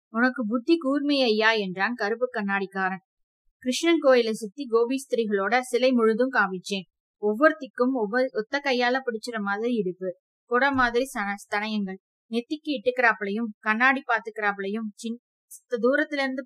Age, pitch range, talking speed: 20-39, 210-255 Hz, 110 wpm